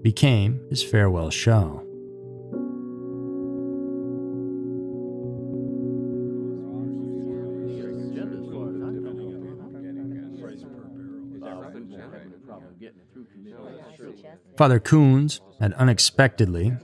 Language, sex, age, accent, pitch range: English, male, 30-49, American, 95-130 Hz